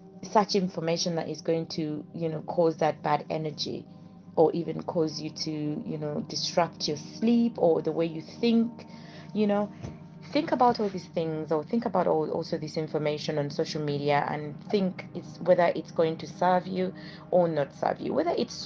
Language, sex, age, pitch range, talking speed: English, female, 30-49, 160-195 Hz, 190 wpm